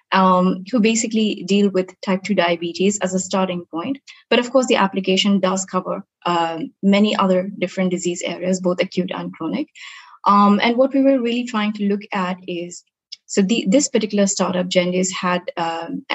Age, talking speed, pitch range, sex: 20-39, 180 wpm, 185-225 Hz, female